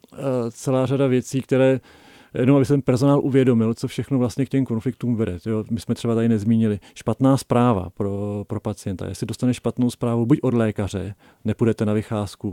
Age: 40-59